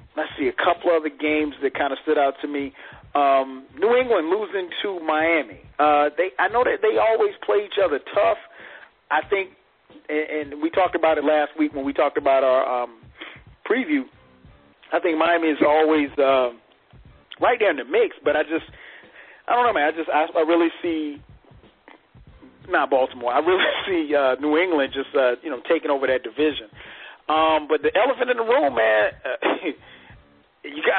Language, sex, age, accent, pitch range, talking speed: English, male, 40-59, American, 145-190 Hz, 185 wpm